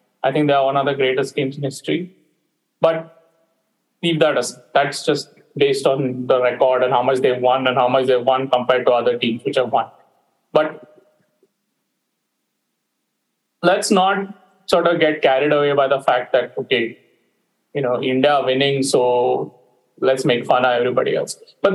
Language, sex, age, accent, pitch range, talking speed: English, male, 30-49, Indian, 150-230 Hz, 175 wpm